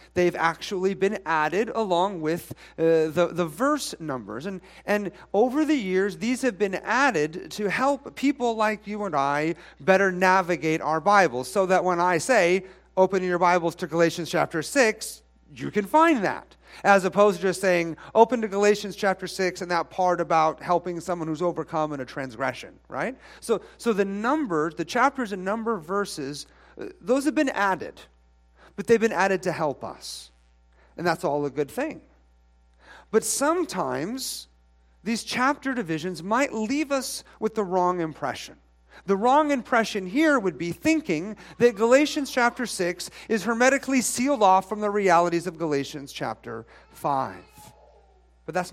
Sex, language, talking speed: male, English, 160 wpm